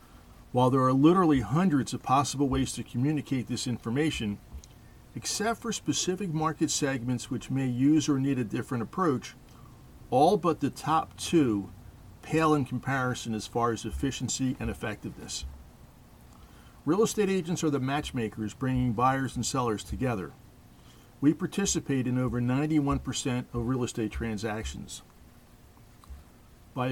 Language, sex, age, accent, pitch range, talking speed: English, male, 50-69, American, 115-145 Hz, 135 wpm